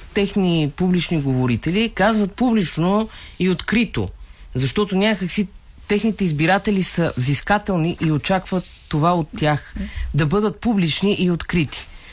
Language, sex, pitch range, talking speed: Bulgarian, female, 125-185 Hz, 120 wpm